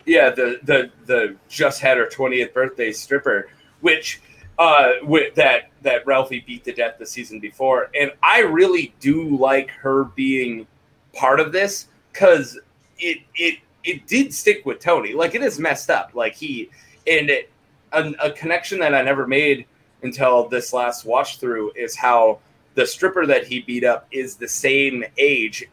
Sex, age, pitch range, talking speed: male, 30-49, 130-170 Hz, 170 wpm